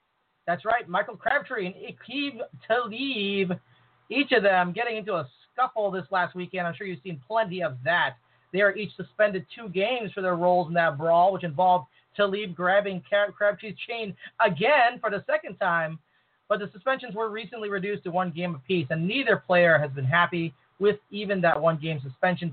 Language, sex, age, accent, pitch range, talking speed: English, male, 30-49, American, 165-205 Hz, 180 wpm